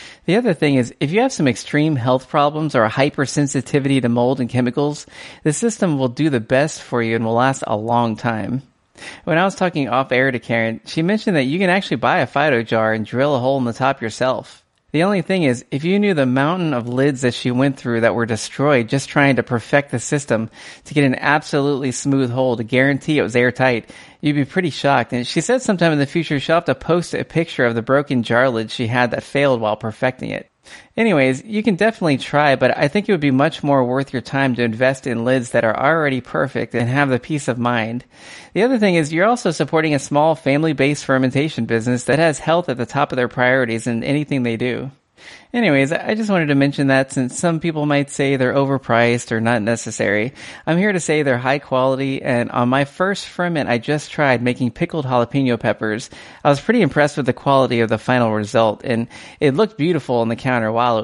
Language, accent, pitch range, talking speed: English, American, 120-150 Hz, 230 wpm